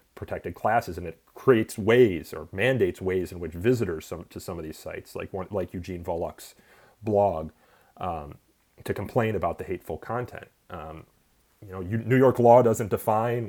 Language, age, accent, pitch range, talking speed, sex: English, 30-49, American, 95-110 Hz, 165 wpm, male